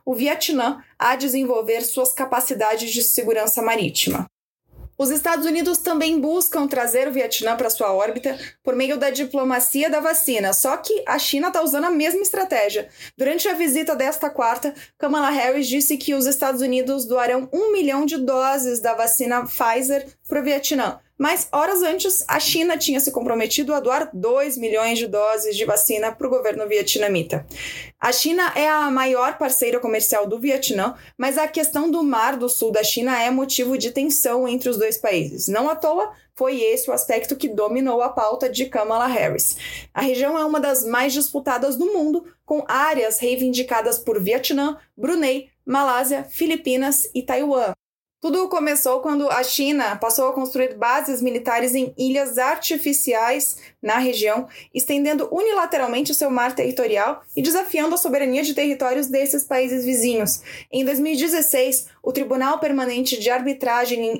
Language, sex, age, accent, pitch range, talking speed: Portuguese, female, 20-39, Brazilian, 245-295 Hz, 165 wpm